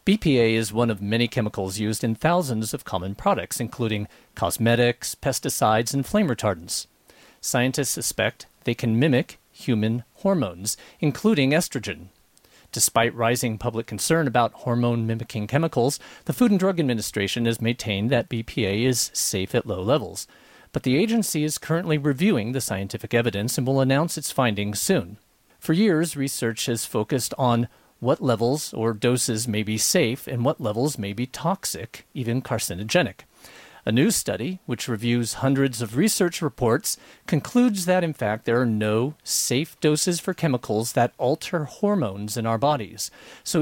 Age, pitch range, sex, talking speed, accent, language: 40-59, 110-150 Hz, male, 155 wpm, American, English